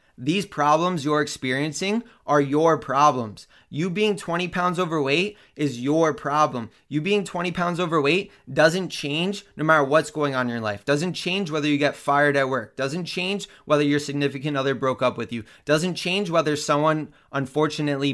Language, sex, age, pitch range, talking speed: English, male, 20-39, 135-170 Hz, 175 wpm